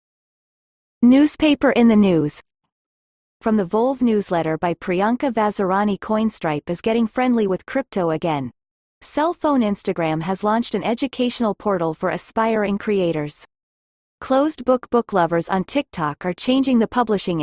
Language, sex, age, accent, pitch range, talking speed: English, female, 30-49, American, 175-245 Hz, 130 wpm